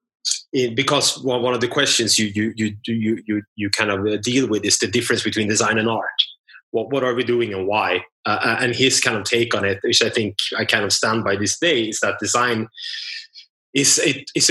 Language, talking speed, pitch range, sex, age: English, 225 wpm, 105-130 Hz, male, 20-39